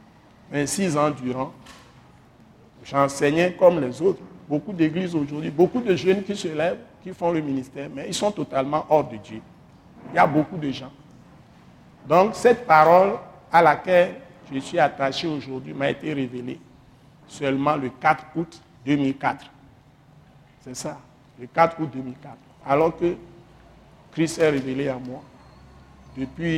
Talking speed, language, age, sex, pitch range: 145 wpm, French, 60-79, male, 130-160 Hz